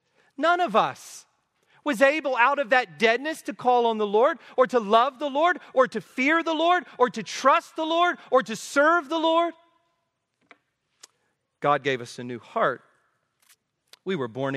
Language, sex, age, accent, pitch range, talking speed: English, male, 40-59, American, 185-290 Hz, 175 wpm